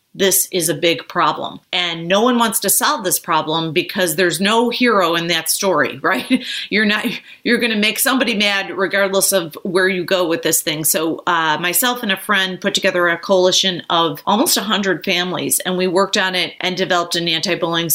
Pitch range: 175-205 Hz